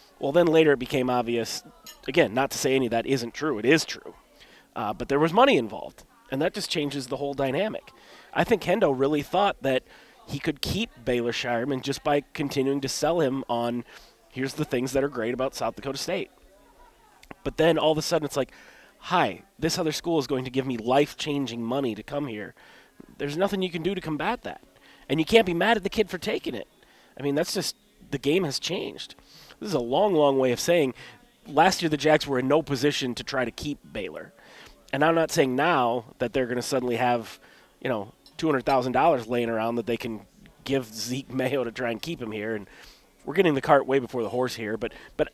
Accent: American